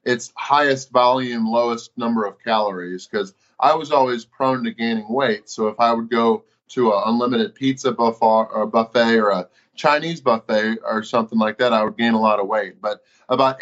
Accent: American